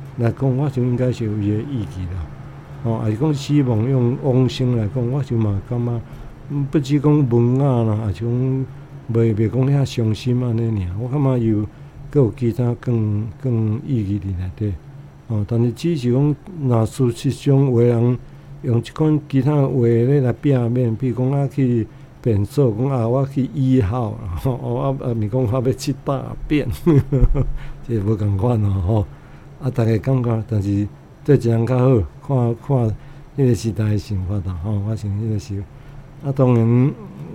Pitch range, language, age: 110-135 Hz, Chinese, 60-79